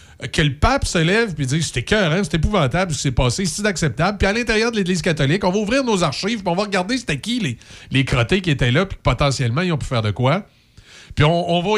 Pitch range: 125-185 Hz